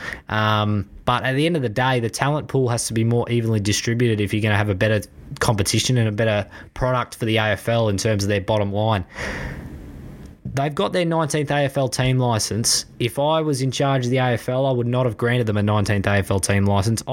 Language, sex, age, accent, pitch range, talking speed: English, male, 20-39, Australian, 105-125 Hz, 225 wpm